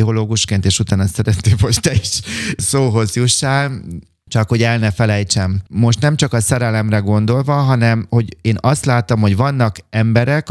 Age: 30-49